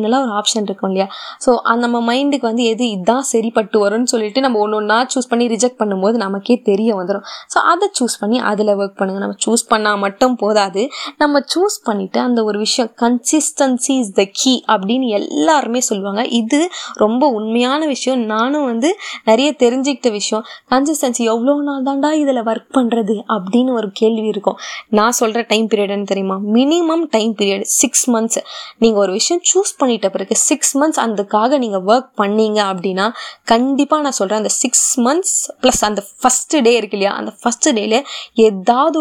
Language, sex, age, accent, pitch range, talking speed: Tamil, female, 20-39, native, 215-280 Hz, 60 wpm